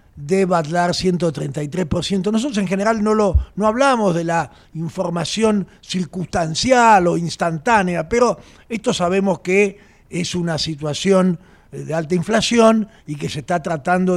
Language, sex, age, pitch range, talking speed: Spanish, male, 50-69, 160-200 Hz, 130 wpm